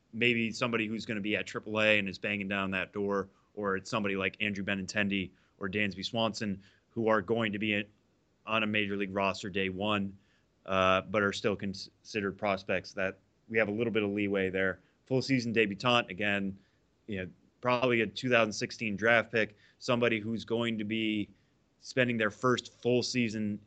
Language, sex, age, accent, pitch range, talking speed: English, male, 30-49, American, 95-110 Hz, 180 wpm